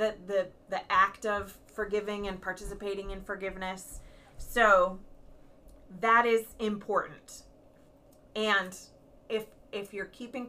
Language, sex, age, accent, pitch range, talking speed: English, female, 30-49, American, 190-225 Hz, 105 wpm